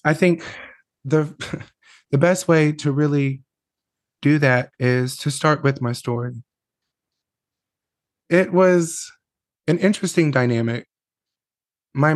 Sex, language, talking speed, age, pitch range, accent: male, English, 110 wpm, 20-39, 120-150 Hz, American